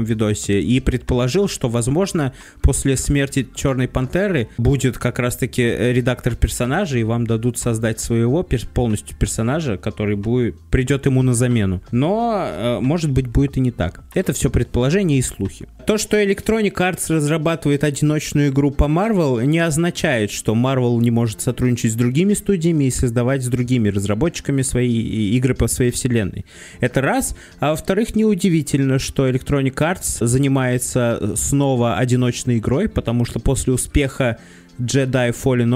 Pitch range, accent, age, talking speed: 120-150 Hz, native, 20-39, 145 wpm